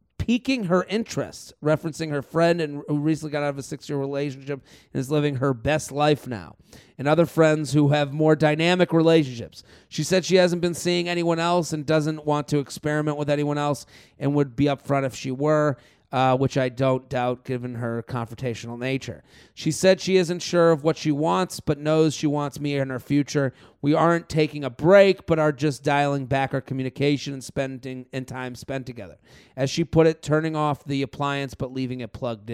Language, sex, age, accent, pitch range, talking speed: English, male, 30-49, American, 125-155 Hz, 200 wpm